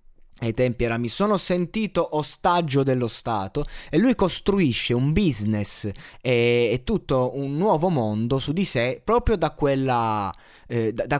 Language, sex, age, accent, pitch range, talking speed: Italian, male, 20-39, native, 115-150 Hz, 135 wpm